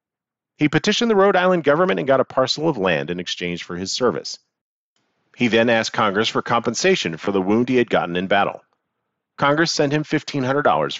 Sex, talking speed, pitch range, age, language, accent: male, 190 wpm, 110-160 Hz, 40-59, English, American